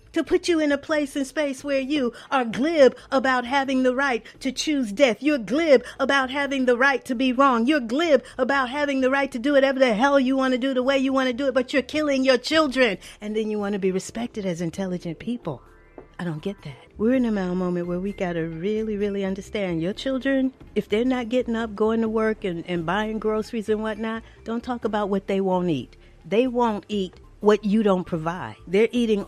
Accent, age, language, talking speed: American, 50-69, English, 230 wpm